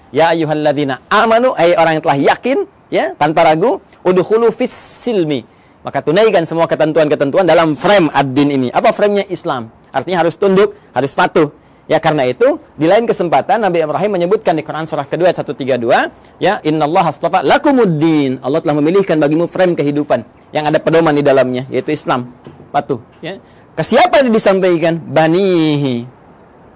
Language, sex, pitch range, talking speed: Indonesian, male, 140-175 Hz, 150 wpm